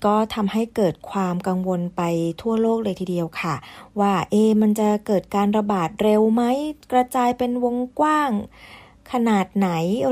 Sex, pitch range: female, 180-220 Hz